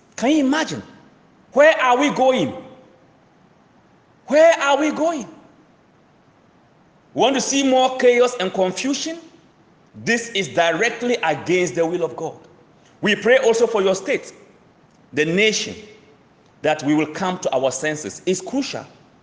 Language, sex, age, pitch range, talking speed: English, male, 40-59, 155-230 Hz, 135 wpm